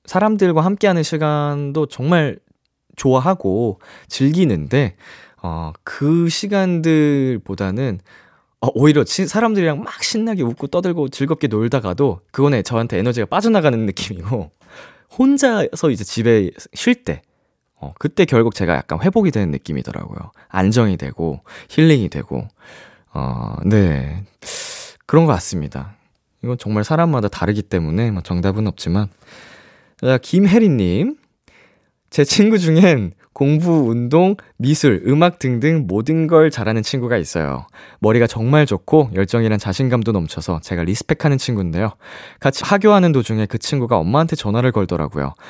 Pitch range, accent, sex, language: 100-155 Hz, native, male, Korean